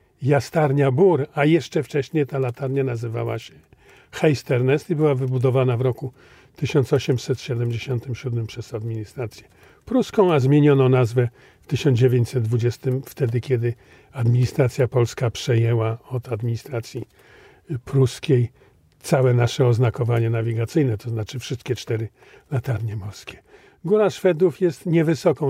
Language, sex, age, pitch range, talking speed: Polish, male, 40-59, 120-150 Hz, 110 wpm